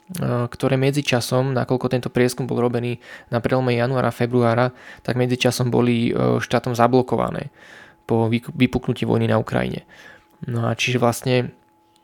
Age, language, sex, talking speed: 20-39, Slovak, male, 125 wpm